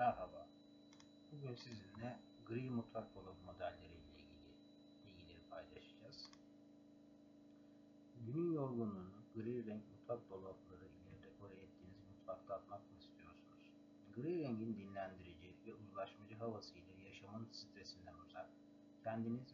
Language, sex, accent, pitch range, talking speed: Turkish, male, native, 95-115 Hz, 100 wpm